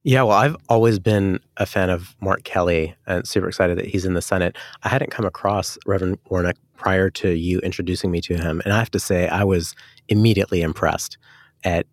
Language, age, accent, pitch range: English, 30-49, American, 90-105 Hz